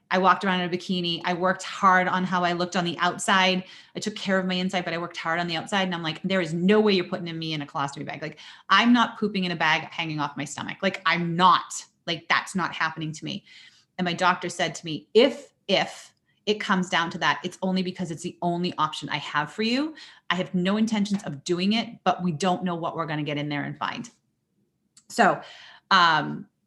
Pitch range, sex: 170-205 Hz, female